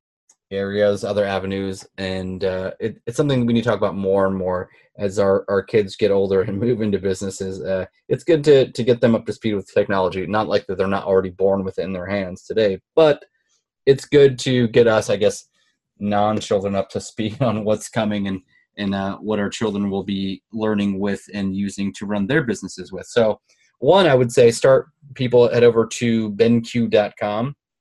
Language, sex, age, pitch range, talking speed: English, male, 20-39, 95-120 Hz, 200 wpm